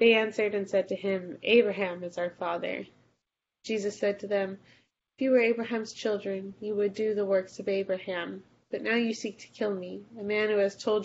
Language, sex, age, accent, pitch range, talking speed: English, female, 20-39, American, 195-220 Hz, 205 wpm